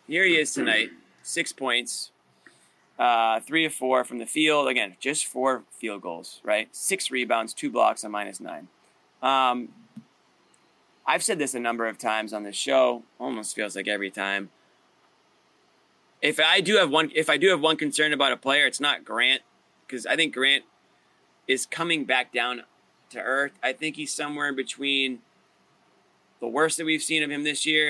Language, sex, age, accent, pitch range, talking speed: English, male, 20-39, American, 110-140 Hz, 175 wpm